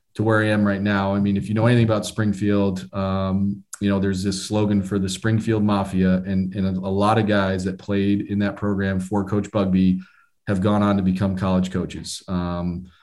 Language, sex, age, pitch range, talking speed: English, male, 30-49, 95-105 Hz, 215 wpm